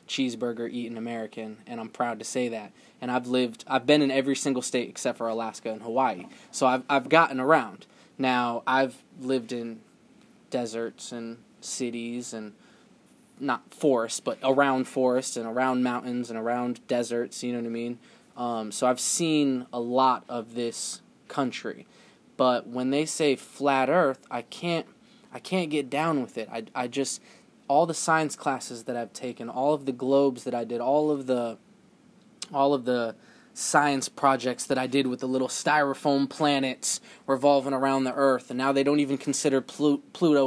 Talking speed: 175 wpm